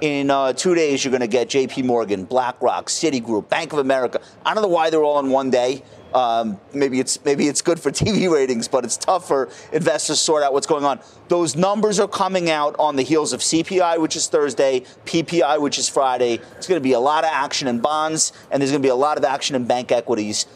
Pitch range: 130-180 Hz